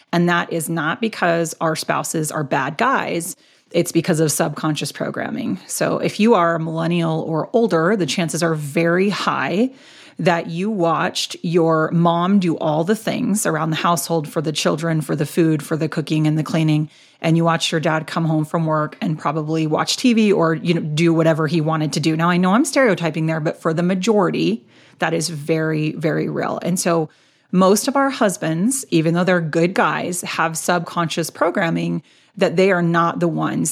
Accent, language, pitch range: American, English, 160-195 Hz